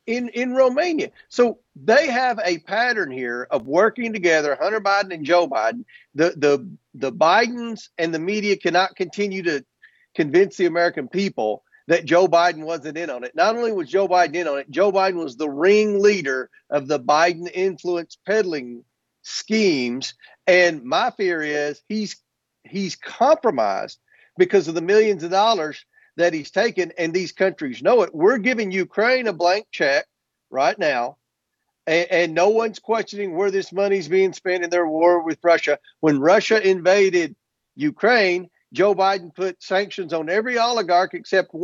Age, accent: 40-59, American